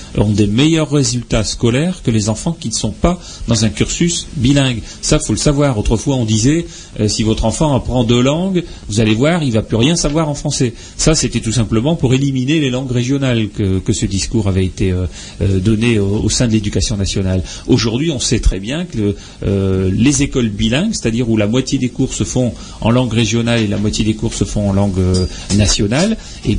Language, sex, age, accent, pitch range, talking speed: French, male, 40-59, French, 105-130 Hz, 220 wpm